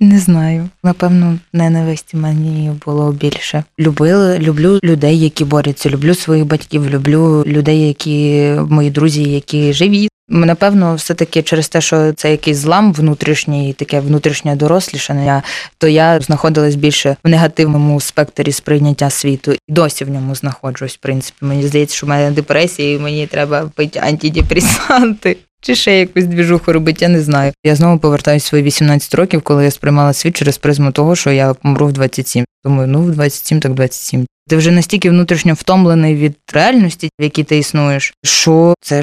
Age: 20-39